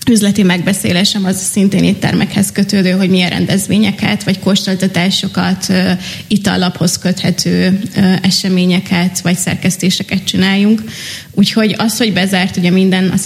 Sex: female